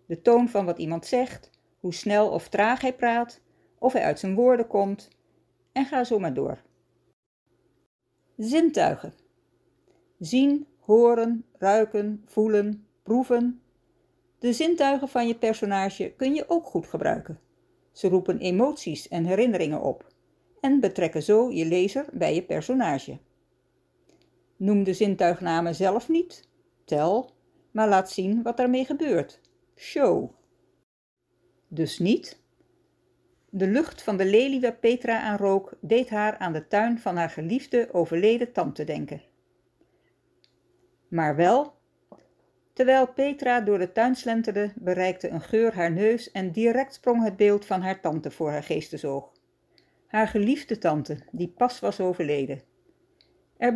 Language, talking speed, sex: Dutch, 135 wpm, female